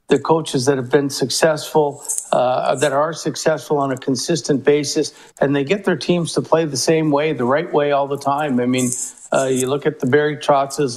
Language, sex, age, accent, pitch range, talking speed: English, male, 50-69, American, 140-160 Hz, 215 wpm